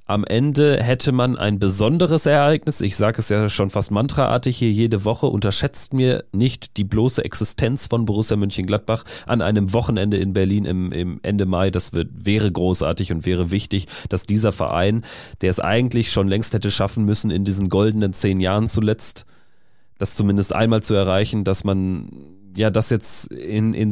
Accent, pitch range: German, 100-125 Hz